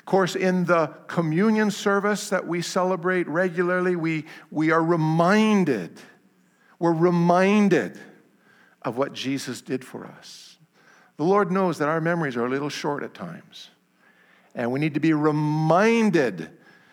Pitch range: 130-180 Hz